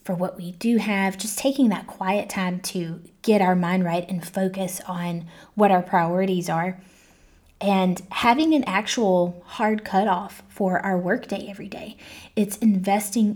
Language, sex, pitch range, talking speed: English, female, 180-215 Hz, 155 wpm